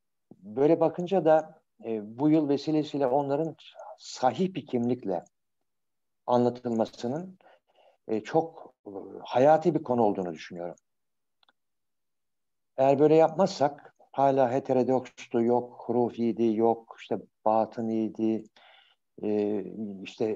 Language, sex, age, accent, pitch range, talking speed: Turkish, male, 60-79, native, 110-155 Hz, 90 wpm